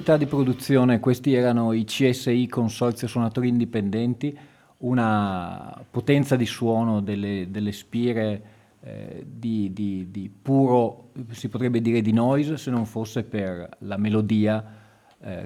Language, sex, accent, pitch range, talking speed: Italian, male, native, 105-125 Hz, 125 wpm